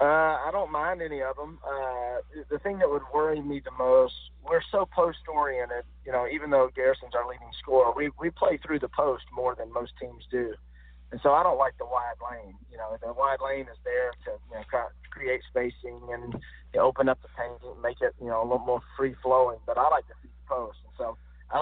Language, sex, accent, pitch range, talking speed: English, male, American, 110-135 Hz, 235 wpm